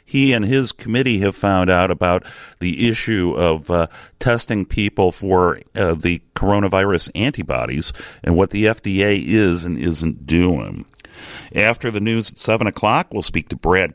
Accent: American